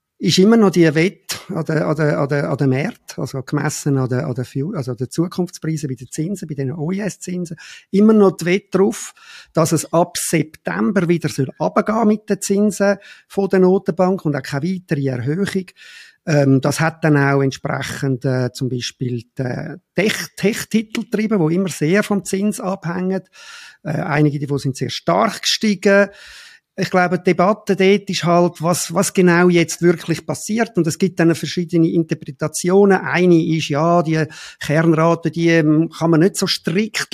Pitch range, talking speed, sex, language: 155-195 Hz, 160 wpm, male, German